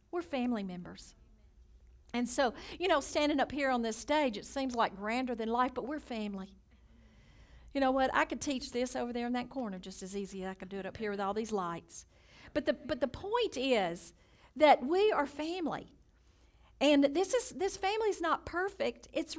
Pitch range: 205-290 Hz